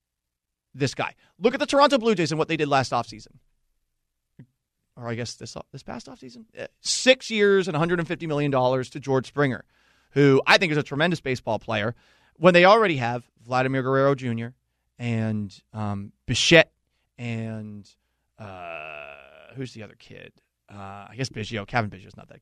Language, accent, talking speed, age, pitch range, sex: English, American, 165 wpm, 30-49, 115-160 Hz, male